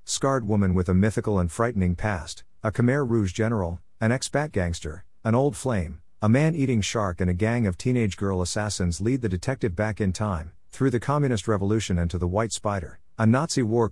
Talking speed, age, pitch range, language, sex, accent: 200 wpm, 50-69, 90-115 Hz, English, male, American